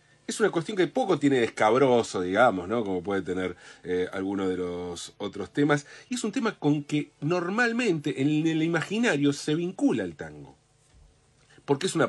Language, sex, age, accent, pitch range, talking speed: Spanish, male, 40-59, Argentinian, 115-180 Hz, 180 wpm